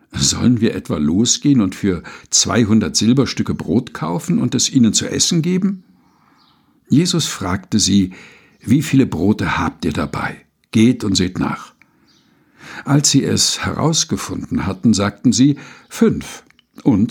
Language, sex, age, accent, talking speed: German, male, 60-79, German, 135 wpm